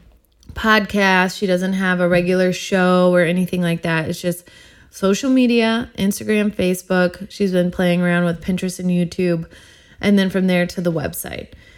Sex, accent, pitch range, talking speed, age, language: female, American, 180-220 Hz, 165 wpm, 20-39, English